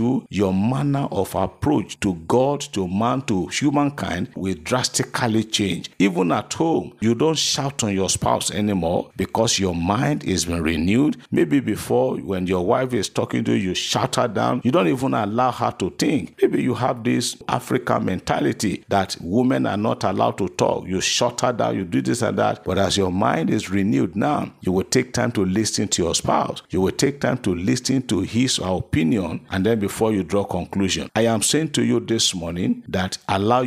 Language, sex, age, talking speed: English, male, 50-69, 200 wpm